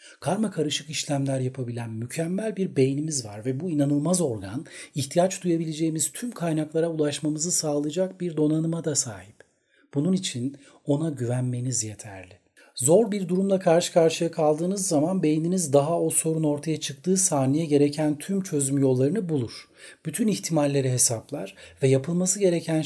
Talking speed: 135 wpm